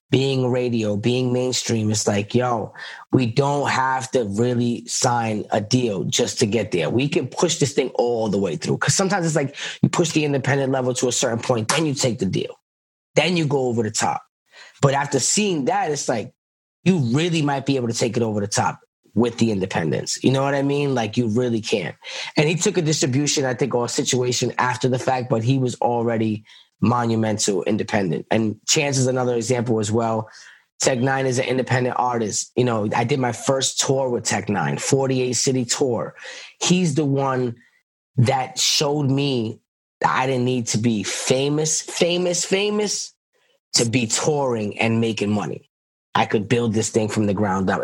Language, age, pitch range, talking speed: English, 20-39, 115-135 Hz, 195 wpm